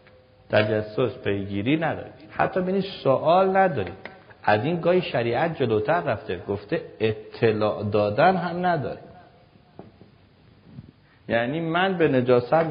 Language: Persian